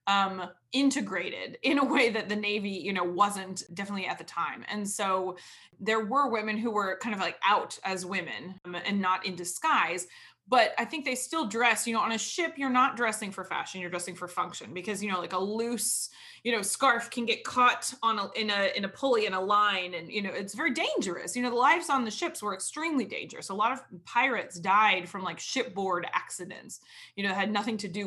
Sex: female